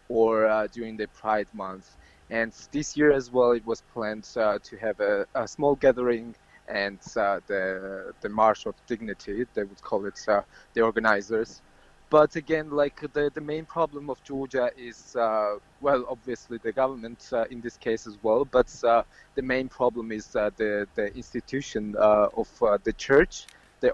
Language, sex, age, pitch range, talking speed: Swedish, male, 20-39, 110-140 Hz, 180 wpm